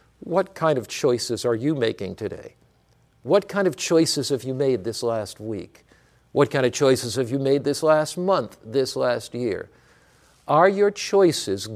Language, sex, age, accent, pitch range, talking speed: English, male, 50-69, American, 135-185 Hz, 175 wpm